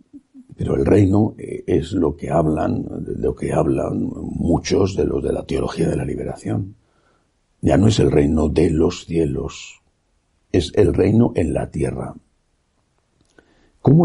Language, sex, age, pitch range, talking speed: Spanish, male, 60-79, 85-125 Hz, 145 wpm